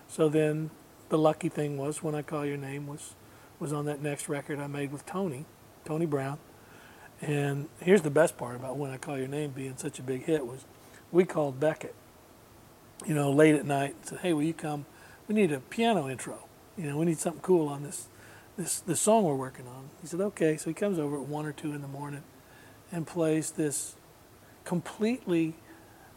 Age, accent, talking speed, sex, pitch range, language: 50-69, American, 210 wpm, male, 140-160 Hz, English